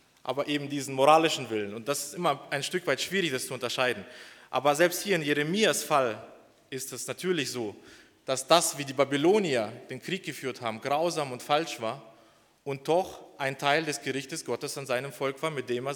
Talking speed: 200 wpm